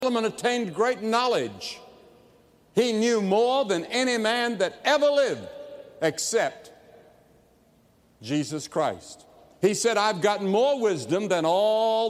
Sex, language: male, English